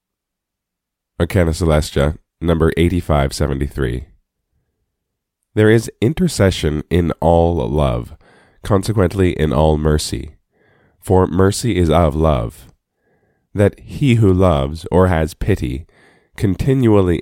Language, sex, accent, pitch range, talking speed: English, male, American, 75-100 Hz, 90 wpm